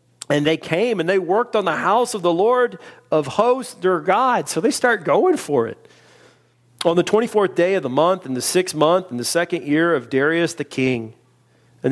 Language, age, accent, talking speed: English, 40-59, American, 210 wpm